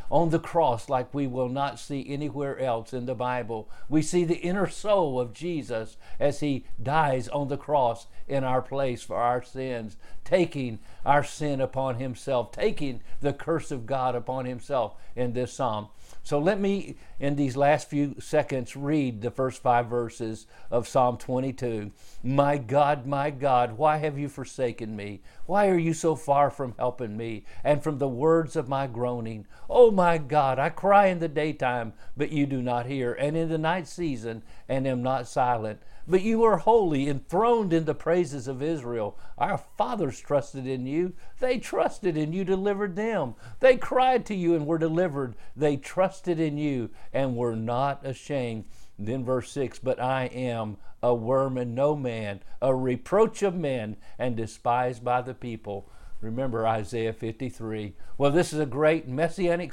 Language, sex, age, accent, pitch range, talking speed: English, male, 50-69, American, 120-150 Hz, 175 wpm